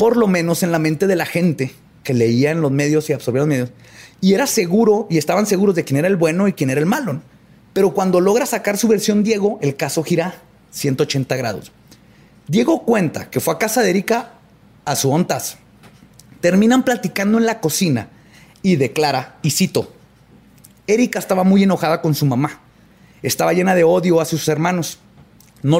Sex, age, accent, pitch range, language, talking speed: male, 30-49, Mexican, 150-190 Hz, Spanish, 190 wpm